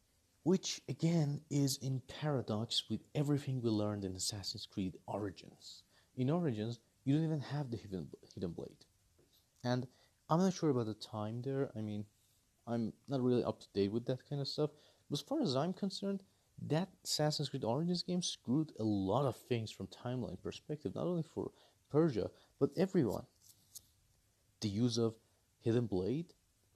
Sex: male